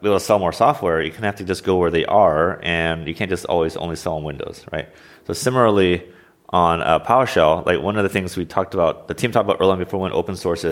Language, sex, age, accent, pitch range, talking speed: German, male, 30-49, American, 85-100 Hz, 265 wpm